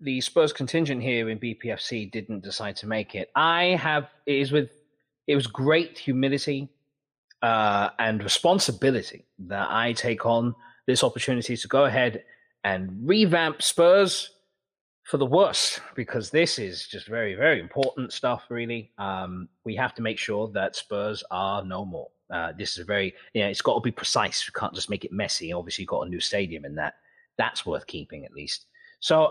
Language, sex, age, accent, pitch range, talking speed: English, male, 30-49, British, 115-165 Hz, 190 wpm